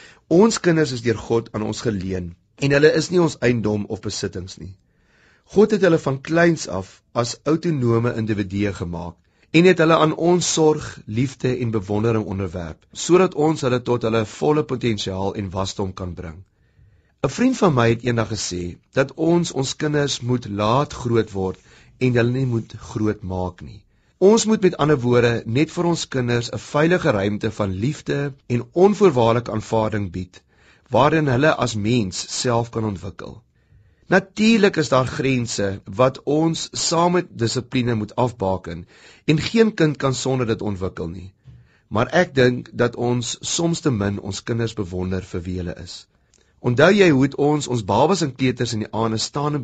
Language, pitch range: Dutch, 100-150 Hz